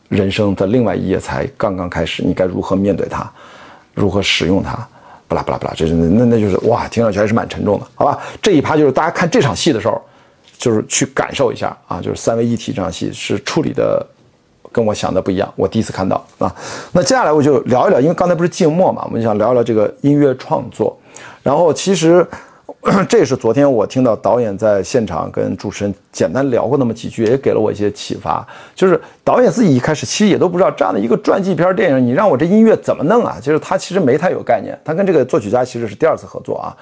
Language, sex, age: Chinese, male, 50-69